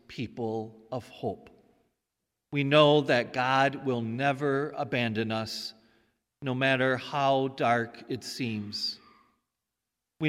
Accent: American